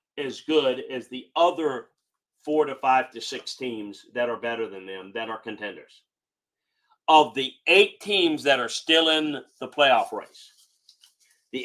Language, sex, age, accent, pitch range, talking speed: English, male, 40-59, American, 115-160 Hz, 160 wpm